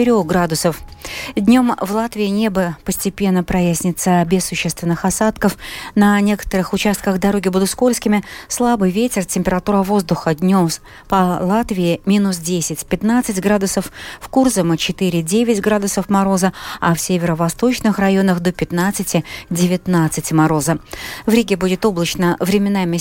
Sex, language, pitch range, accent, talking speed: female, Russian, 175-210 Hz, native, 110 wpm